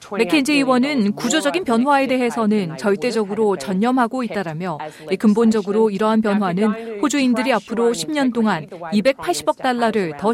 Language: Korean